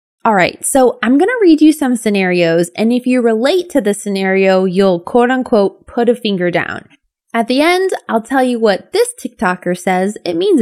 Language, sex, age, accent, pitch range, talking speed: English, female, 20-39, American, 200-280 Hz, 190 wpm